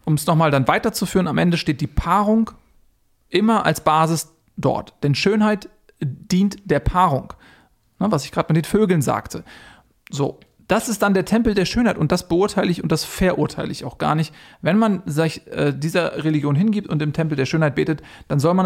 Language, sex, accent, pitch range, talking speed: German, male, German, 150-185 Hz, 195 wpm